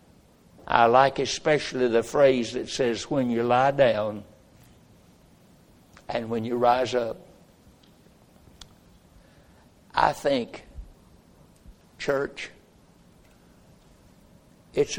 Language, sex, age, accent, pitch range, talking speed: English, male, 60-79, American, 115-135 Hz, 80 wpm